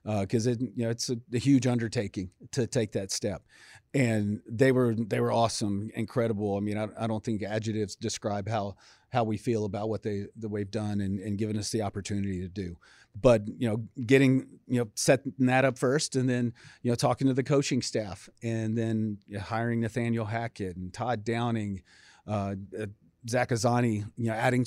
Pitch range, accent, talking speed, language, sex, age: 110-125 Hz, American, 205 wpm, English, male, 40-59